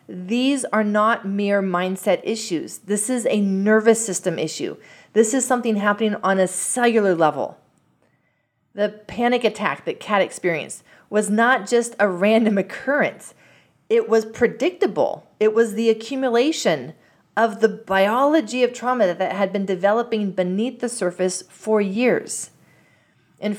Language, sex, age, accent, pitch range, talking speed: English, female, 40-59, American, 190-235 Hz, 135 wpm